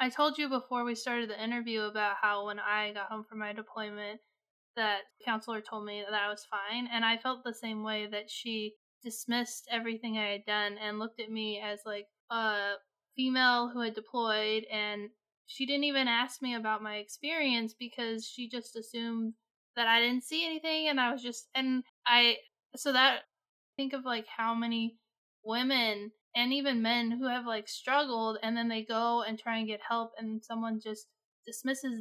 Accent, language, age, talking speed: American, English, 20-39, 190 wpm